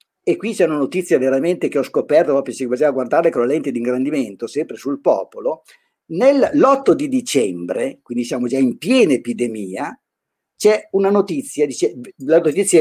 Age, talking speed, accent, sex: 50-69, 170 wpm, native, male